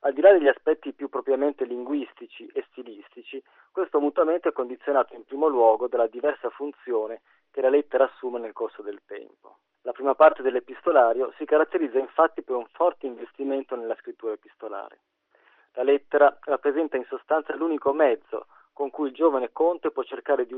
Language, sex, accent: Italian, male, native